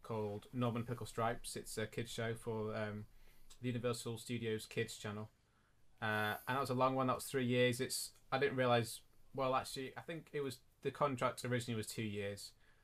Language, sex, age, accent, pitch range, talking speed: English, male, 20-39, British, 110-125 Hz, 195 wpm